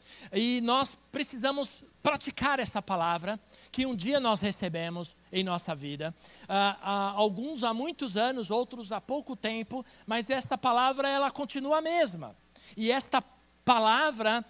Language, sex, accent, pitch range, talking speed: Portuguese, male, Brazilian, 200-265 Hz, 130 wpm